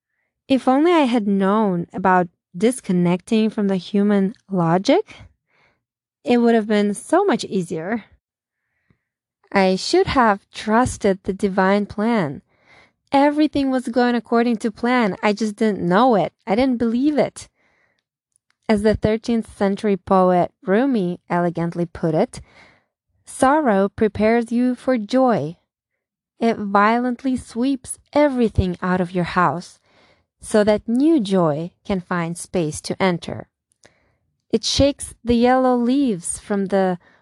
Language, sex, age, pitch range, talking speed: English, female, 20-39, 190-250 Hz, 125 wpm